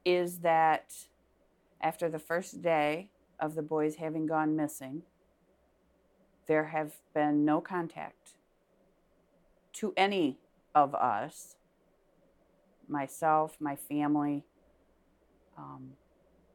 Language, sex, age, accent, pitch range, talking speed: English, female, 40-59, American, 150-175 Hz, 90 wpm